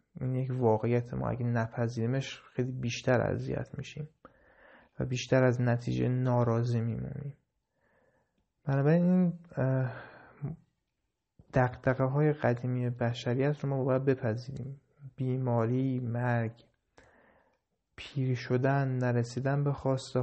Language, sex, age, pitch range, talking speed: Persian, male, 30-49, 120-140 Hz, 100 wpm